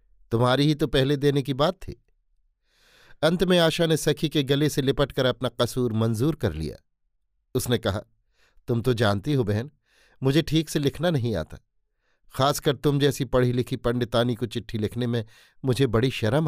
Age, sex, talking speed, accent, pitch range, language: 50-69, male, 175 wpm, native, 115-145 Hz, Hindi